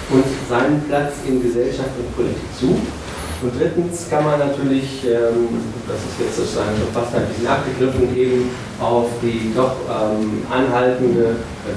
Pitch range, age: 115-135 Hz, 40-59